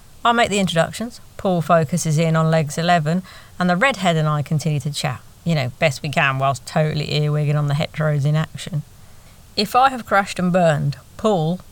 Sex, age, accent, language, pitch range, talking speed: female, 30-49, British, English, 140-180 Hz, 195 wpm